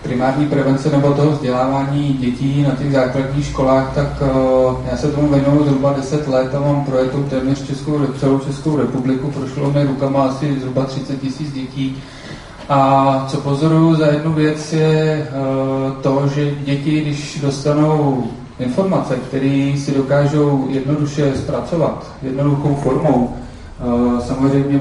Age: 30-49